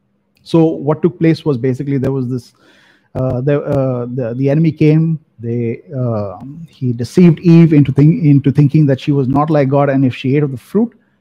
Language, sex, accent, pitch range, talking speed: English, male, Indian, 135-165 Hz, 205 wpm